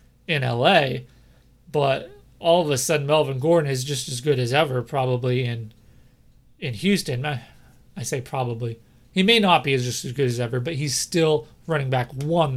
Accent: American